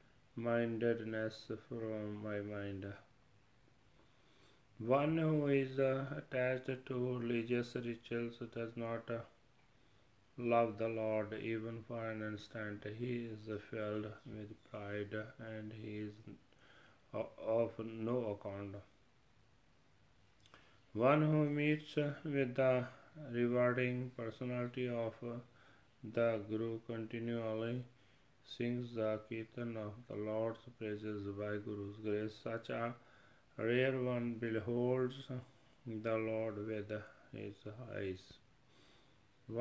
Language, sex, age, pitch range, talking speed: Punjabi, male, 30-49, 110-125 Hz, 95 wpm